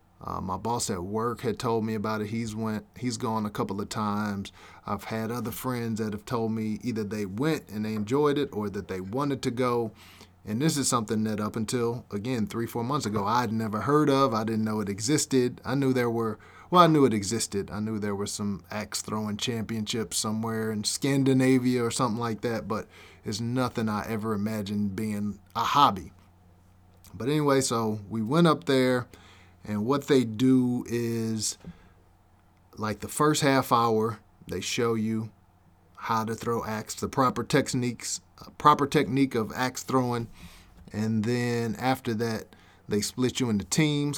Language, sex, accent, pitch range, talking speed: English, male, American, 100-120 Hz, 180 wpm